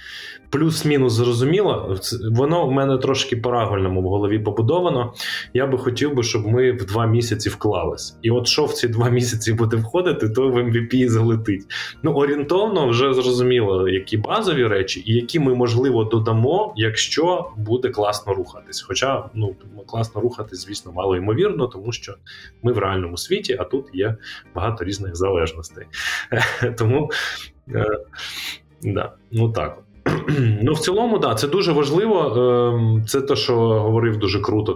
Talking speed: 145 wpm